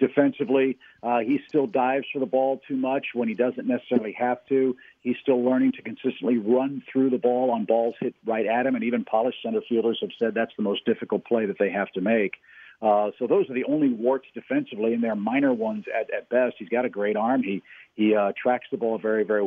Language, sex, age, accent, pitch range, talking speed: English, male, 50-69, American, 115-145 Hz, 235 wpm